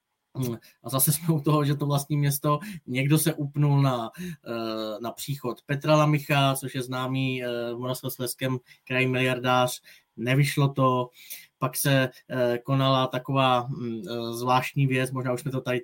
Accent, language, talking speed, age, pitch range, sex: native, Czech, 140 wpm, 20-39, 130-150 Hz, male